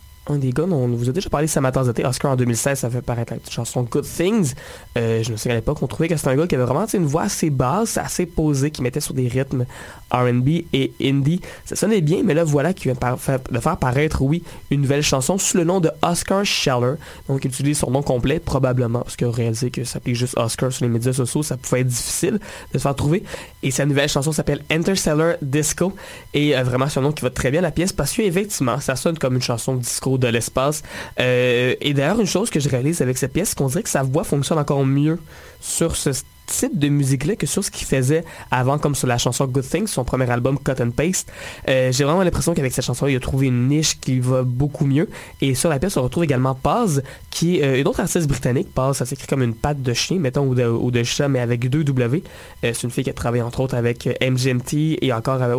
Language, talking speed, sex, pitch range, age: French, 250 wpm, male, 125-155 Hz, 20-39